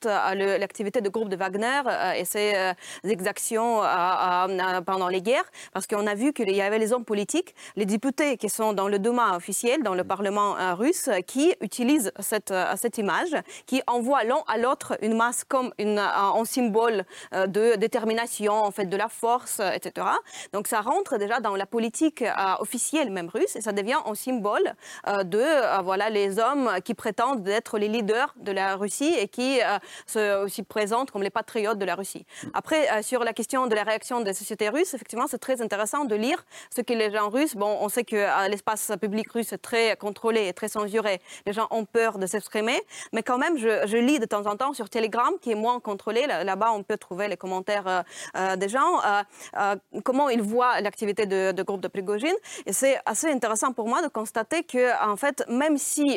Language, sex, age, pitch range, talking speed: French, female, 30-49, 205-245 Hz, 200 wpm